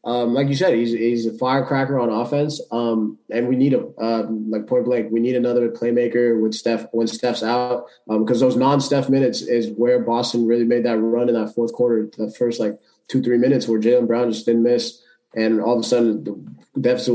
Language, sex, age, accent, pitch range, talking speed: English, male, 20-39, American, 115-135 Hz, 225 wpm